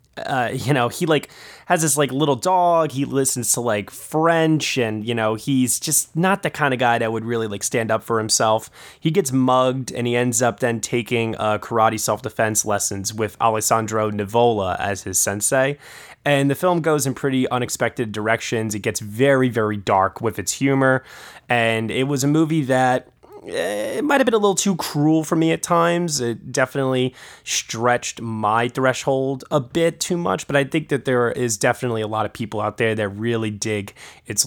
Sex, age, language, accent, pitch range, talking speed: male, 20-39, English, American, 110-140 Hz, 195 wpm